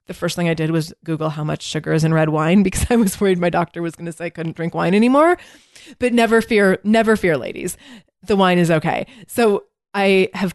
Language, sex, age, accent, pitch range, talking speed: English, female, 20-39, American, 160-195 Hz, 240 wpm